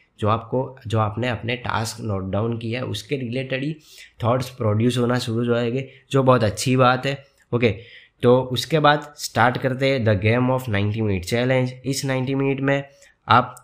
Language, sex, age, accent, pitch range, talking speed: Hindi, male, 20-39, native, 110-130 Hz, 185 wpm